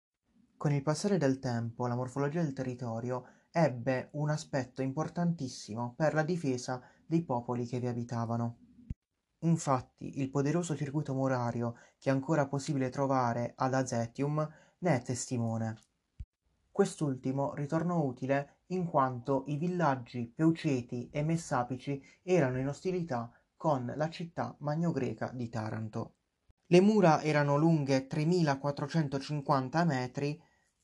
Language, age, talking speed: Italian, 30-49, 120 wpm